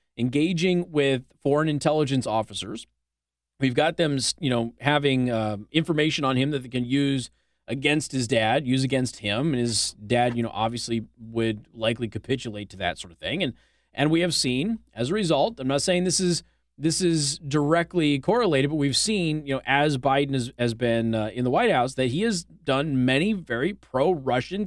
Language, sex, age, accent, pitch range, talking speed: English, male, 30-49, American, 115-170 Hz, 190 wpm